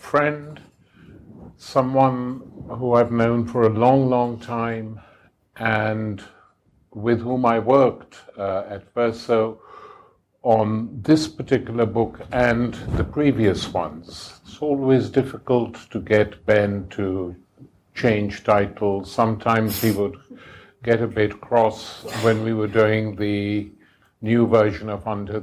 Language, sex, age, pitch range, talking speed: English, male, 50-69, 100-120 Hz, 120 wpm